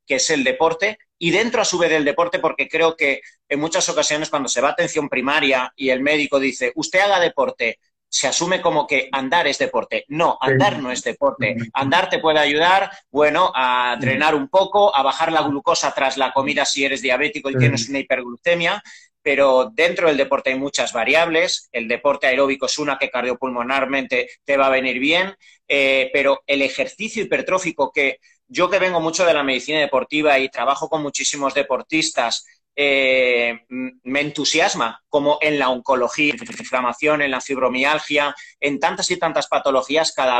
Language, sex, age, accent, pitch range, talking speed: Spanish, male, 30-49, Spanish, 135-165 Hz, 180 wpm